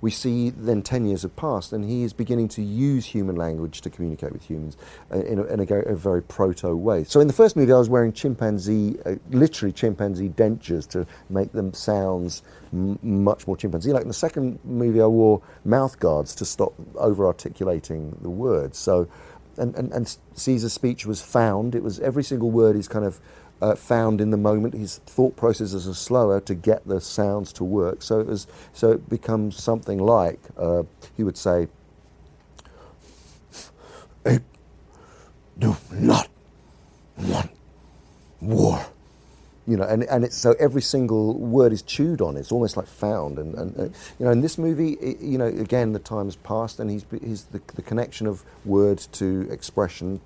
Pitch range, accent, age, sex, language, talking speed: 95-115 Hz, British, 40-59, male, English, 180 wpm